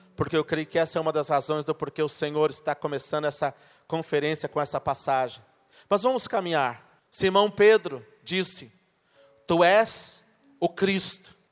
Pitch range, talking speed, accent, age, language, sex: 155-195 Hz, 155 wpm, Brazilian, 40-59, Portuguese, male